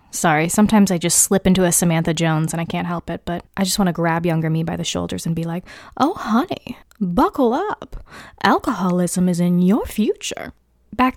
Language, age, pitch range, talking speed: English, 20-39, 165-195 Hz, 205 wpm